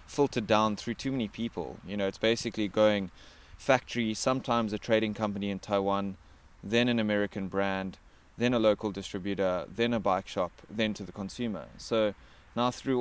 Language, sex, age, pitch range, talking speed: English, male, 20-39, 95-115 Hz, 170 wpm